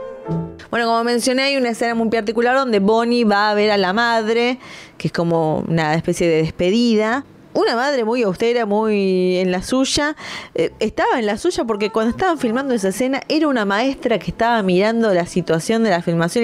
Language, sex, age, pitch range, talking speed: Spanish, female, 20-39, 185-250 Hz, 195 wpm